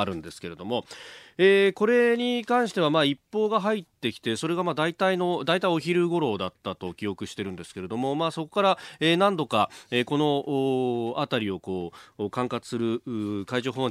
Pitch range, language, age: 115-175 Hz, Japanese, 30-49